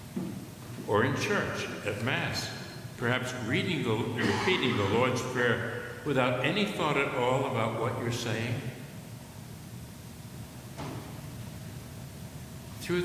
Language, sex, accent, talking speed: English, male, American, 100 wpm